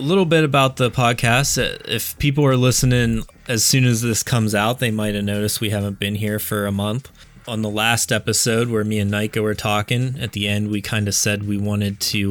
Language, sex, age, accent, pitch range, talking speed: English, male, 20-39, American, 100-125 Hz, 225 wpm